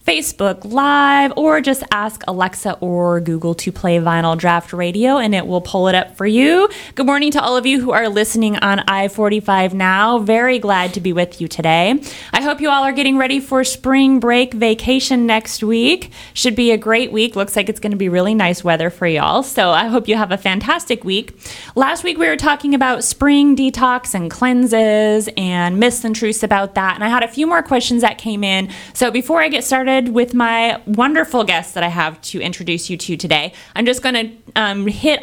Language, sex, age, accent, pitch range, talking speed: English, female, 20-39, American, 185-255 Hz, 215 wpm